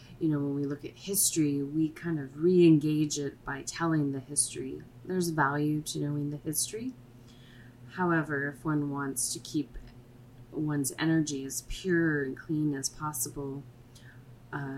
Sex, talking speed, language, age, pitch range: female, 150 wpm, English, 30-49, 125-150 Hz